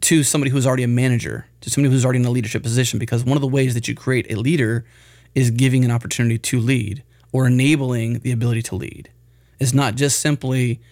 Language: English